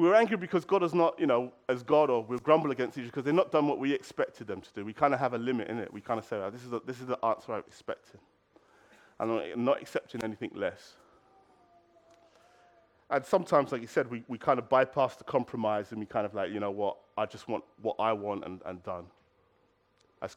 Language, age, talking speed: English, 30-49, 250 wpm